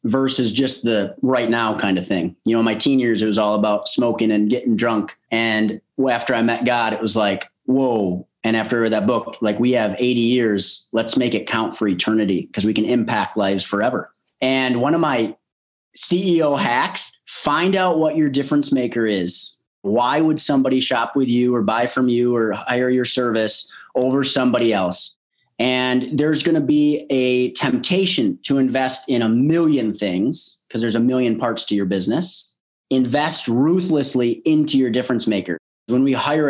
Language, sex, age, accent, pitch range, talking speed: English, male, 30-49, American, 115-150 Hz, 185 wpm